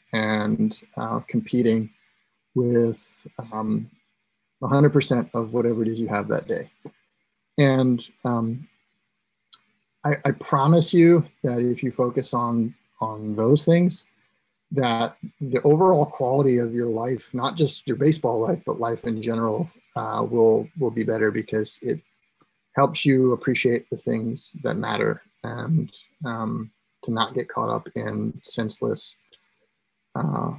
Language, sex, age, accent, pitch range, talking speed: English, male, 30-49, American, 115-140 Hz, 135 wpm